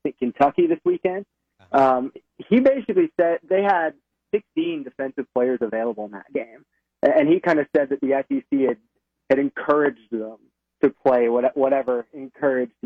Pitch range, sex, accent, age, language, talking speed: 120-150 Hz, male, American, 20-39, English, 150 wpm